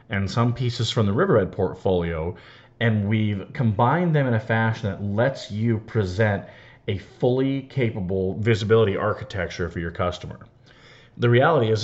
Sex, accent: male, American